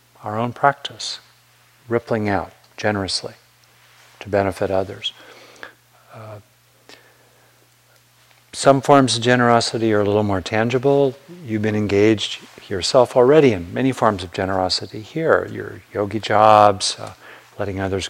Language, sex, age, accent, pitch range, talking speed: English, male, 50-69, American, 95-115 Hz, 120 wpm